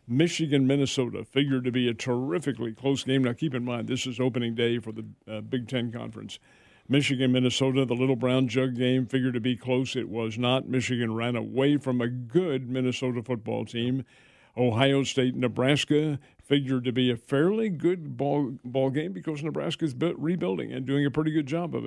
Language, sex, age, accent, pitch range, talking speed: English, male, 50-69, American, 125-140 Hz, 180 wpm